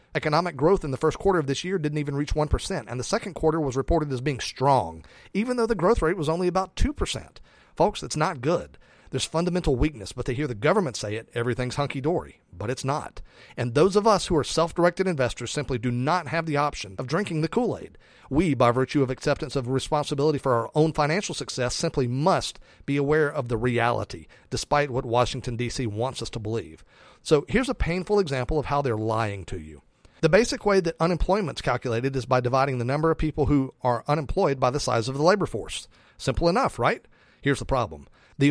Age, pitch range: 40-59, 125-160 Hz